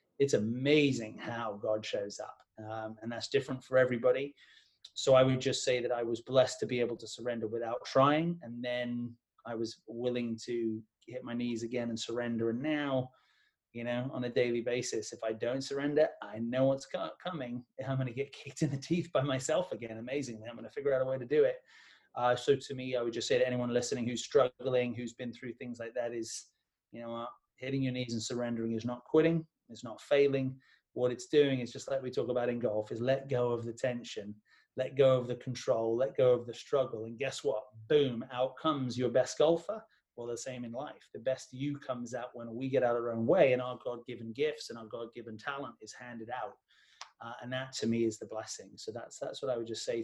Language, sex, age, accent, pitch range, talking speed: English, male, 30-49, British, 115-135 Hz, 230 wpm